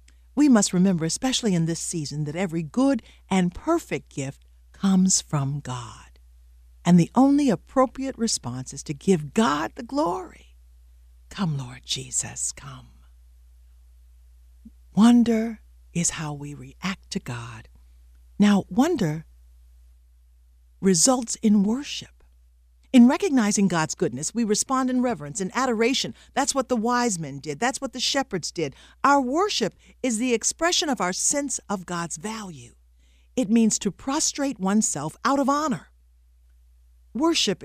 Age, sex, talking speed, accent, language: 60-79, female, 135 wpm, American, English